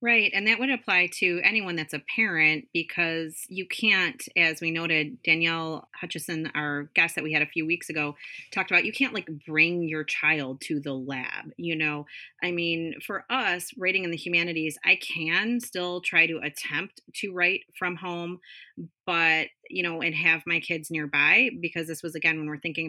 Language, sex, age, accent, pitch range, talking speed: English, female, 30-49, American, 150-175 Hz, 190 wpm